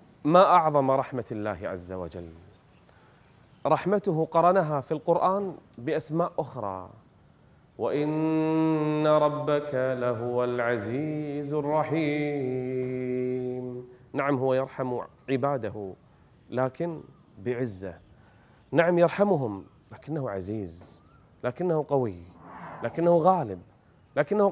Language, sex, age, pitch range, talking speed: Arabic, male, 30-49, 115-160 Hz, 80 wpm